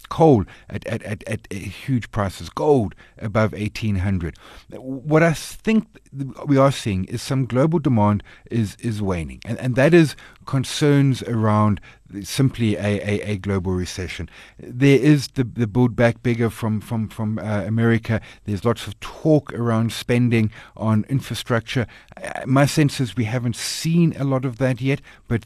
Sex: male